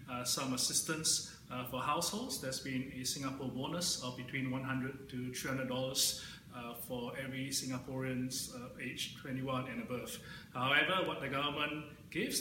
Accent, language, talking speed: Malaysian, English, 140 wpm